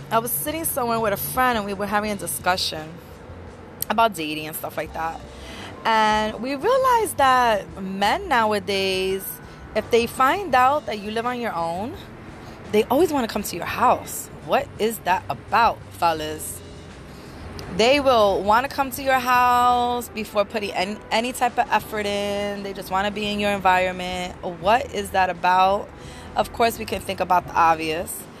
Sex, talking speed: female, 175 wpm